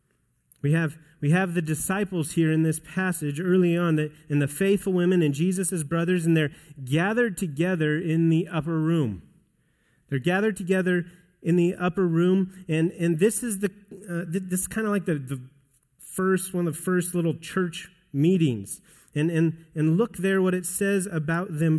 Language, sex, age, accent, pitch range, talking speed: English, male, 30-49, American, 145-185 Hz, 180 wpm